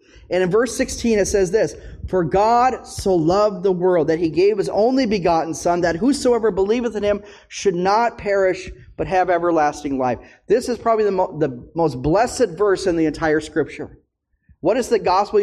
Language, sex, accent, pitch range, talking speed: English, male, American, 165-240 Hz, 190 wpm